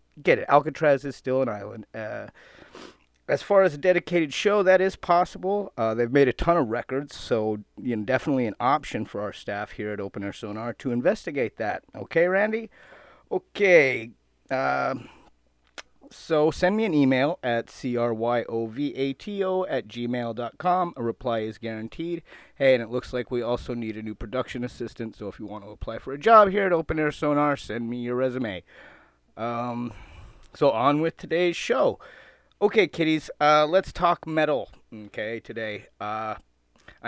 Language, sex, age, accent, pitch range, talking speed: English, male, 30-49, American, 110-150 Hz, 165 wpm